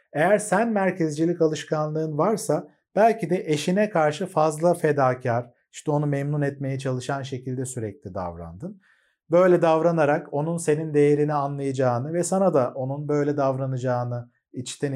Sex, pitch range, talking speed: male, 130-170 Hz, 130 wpm